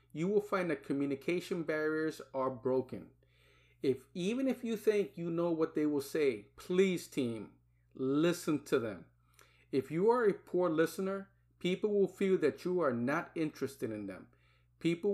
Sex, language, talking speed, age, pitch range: male, English, 165 wpm, 50-69, 120-180 Hz